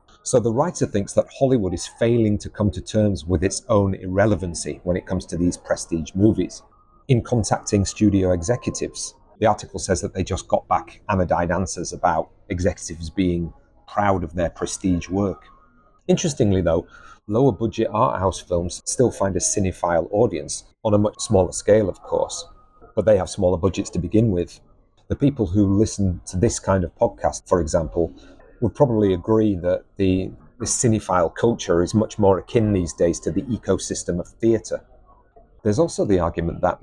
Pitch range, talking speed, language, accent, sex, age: 90-110 Hz, 175 wpm, English, British, male, 40-59